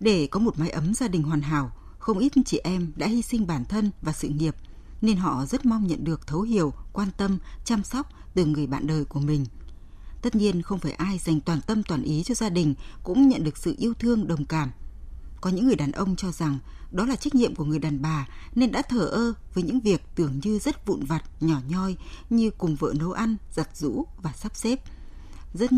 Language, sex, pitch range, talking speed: Vietnamese, female, 155-220 Hz, 235 wpm